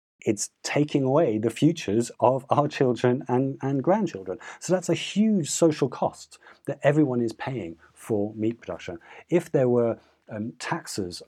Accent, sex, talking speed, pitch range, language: British, male, 155 wpm, 105-135 Hz, English